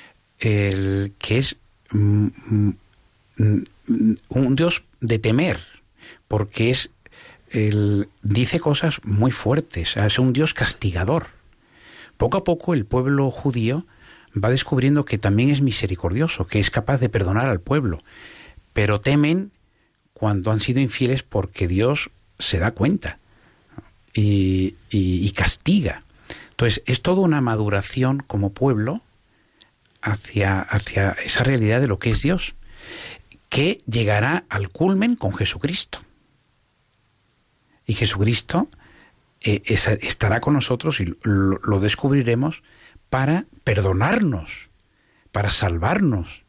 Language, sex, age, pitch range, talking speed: Spanish, male, 60-79, 100-135 Hz, 115 wpm